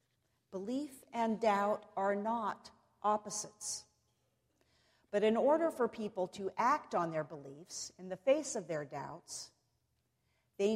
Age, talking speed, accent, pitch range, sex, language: 50-69, 130 wpm, American, 165-235 Hz, female, English